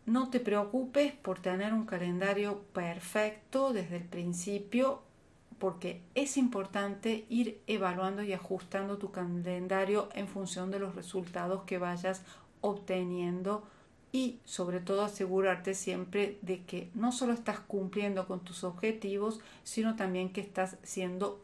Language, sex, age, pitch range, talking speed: Spanish, female, 40-59, 185-220 Hz, 130 wpm